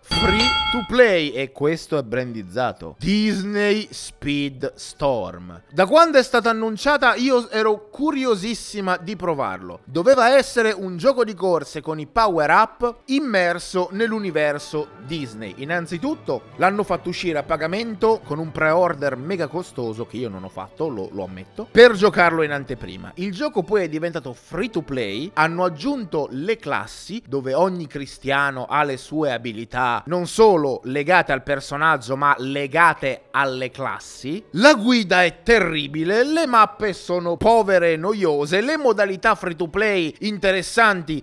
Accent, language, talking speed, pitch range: native, Italian, 145 wpm, 145-210 Hz